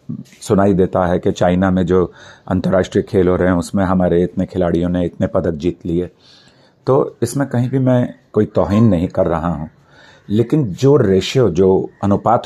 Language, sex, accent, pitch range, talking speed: Hindi, male, native, 90-110 Hz, 180 wpm